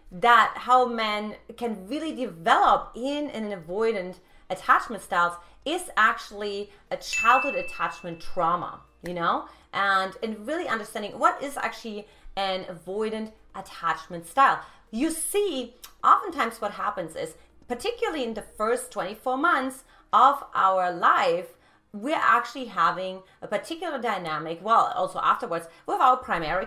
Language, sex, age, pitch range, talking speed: English, female, 30-49, 205-265 Hz, 130 wpm